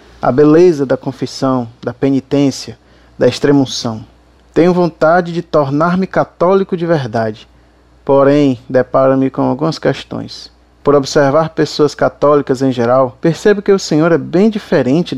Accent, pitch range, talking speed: Brazilian, 130-175 Hz, 130 wpm